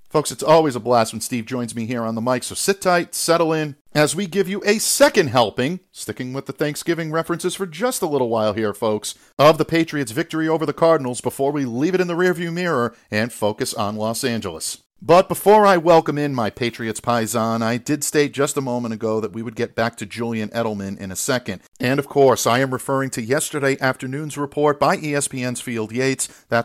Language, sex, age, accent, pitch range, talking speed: English, male, 50-69, American, 115-150 Hz, 220 wpm